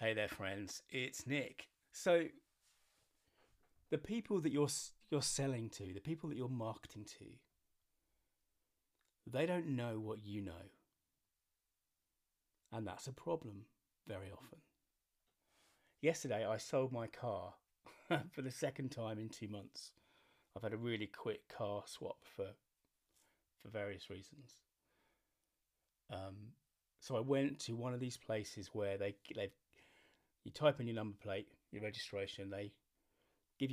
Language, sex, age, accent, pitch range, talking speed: English, male, 30-49, British, 100-130 Hz, 135 wpm